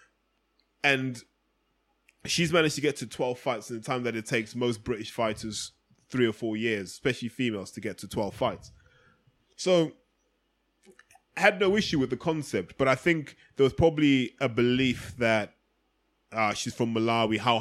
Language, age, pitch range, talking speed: English, 20-39, 110-130 Hz, 170 wpm